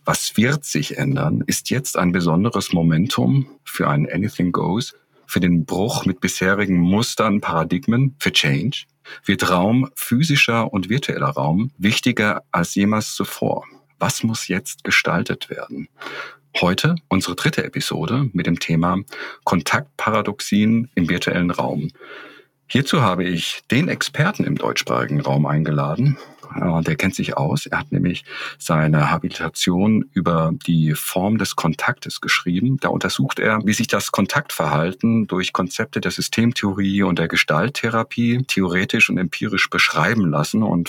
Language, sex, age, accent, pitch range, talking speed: German, male, 50-69, German, 85-115 Hz, 135 wpm